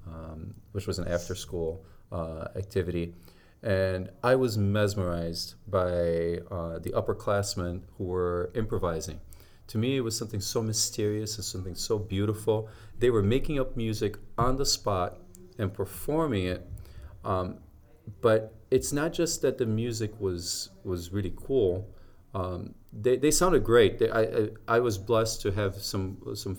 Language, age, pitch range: English, 40-59, 90-115 Hz